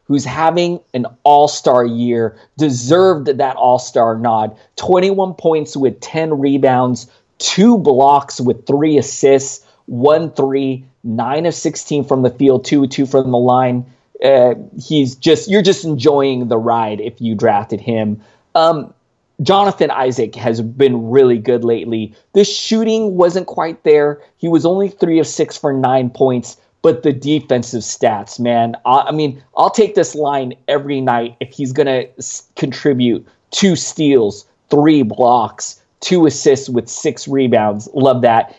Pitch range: 120-150 Hz